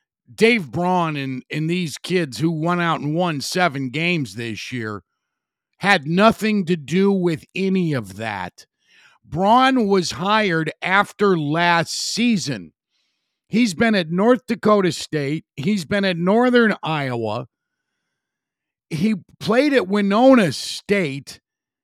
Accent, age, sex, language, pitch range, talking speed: American, 50-69, male, English, 165-220 Hz, 125 wpm